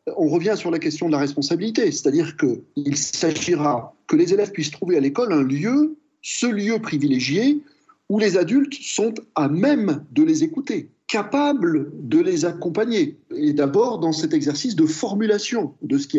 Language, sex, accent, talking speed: French, male, French, 170 wpm